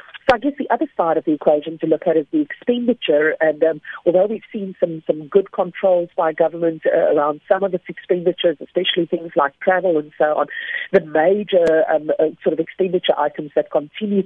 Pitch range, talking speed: 155-180 Hz, 205 wpm